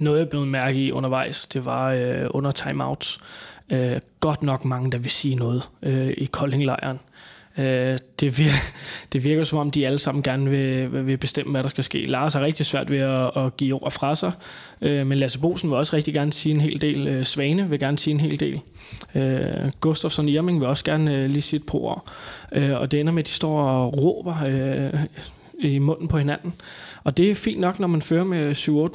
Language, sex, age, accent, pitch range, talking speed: Danish, male, 20-39, native, 130-150 Hz, 215 wpm